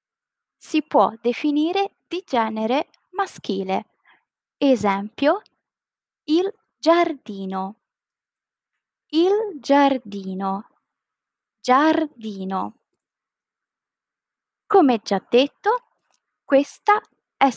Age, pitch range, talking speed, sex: 20-39, 220-335 Hz, 60 wpm, female